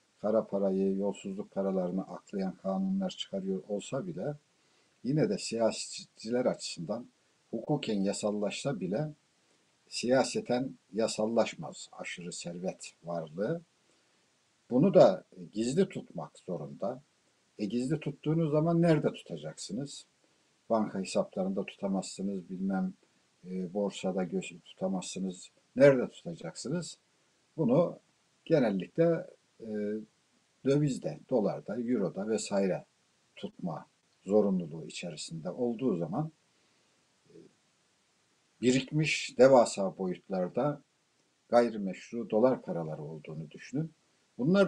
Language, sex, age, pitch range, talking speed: Turkish, male, 60-79, 100-160 Hz, 85 wpm